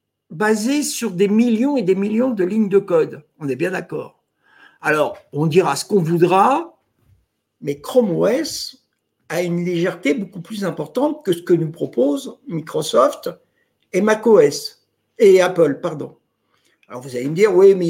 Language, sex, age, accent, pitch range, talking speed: French, male, 60-79, French, 165-225 Hz, 165 wpm